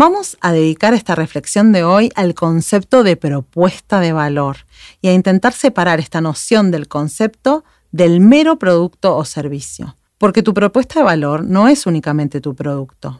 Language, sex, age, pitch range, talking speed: Spanish, female, 40-59, 150-205 Hz, 165 wpm